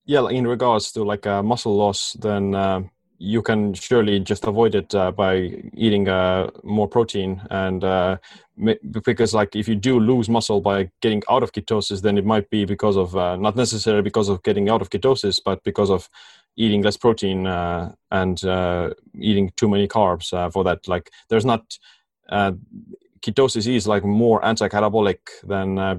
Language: English